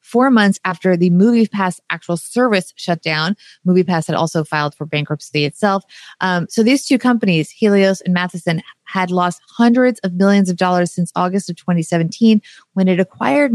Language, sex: English, female